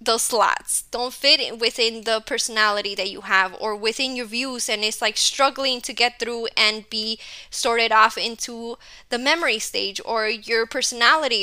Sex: female